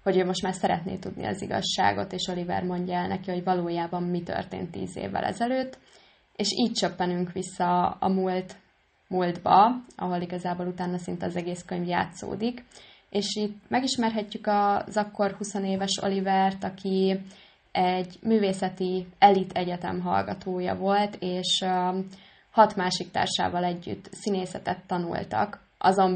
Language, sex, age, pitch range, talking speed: Hungarian, female, 20-39, 185-205 Hz, 135 wpm